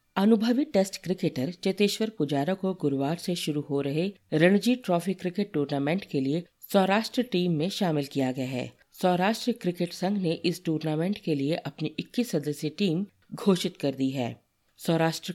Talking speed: 160 wpm